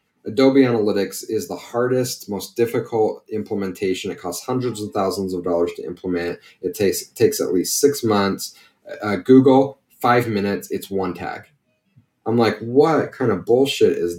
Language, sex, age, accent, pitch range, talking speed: English, male, 30-49, American, 100-135 Hz, 165 wpm